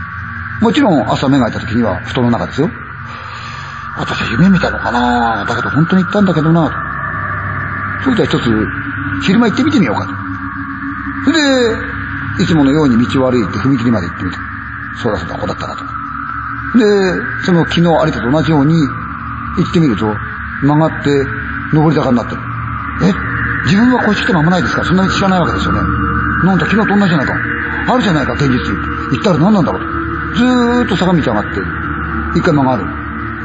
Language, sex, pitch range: Chinese, male, 110-180 Hz